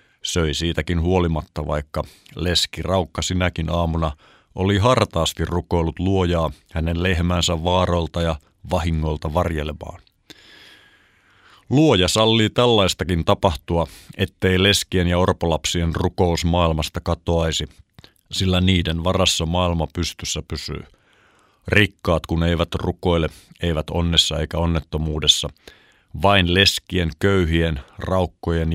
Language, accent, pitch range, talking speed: Finnish, native, 80-95 Hz, 100 wpm